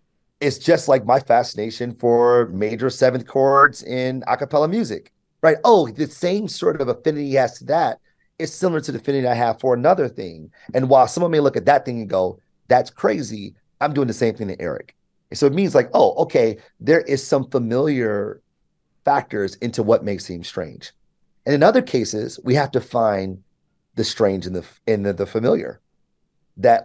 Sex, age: male, 30-49